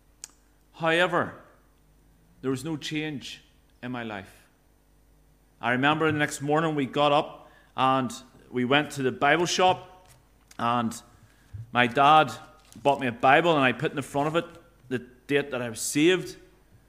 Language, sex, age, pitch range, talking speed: English, male, 40-59, 130-170 Hz, 155 wpm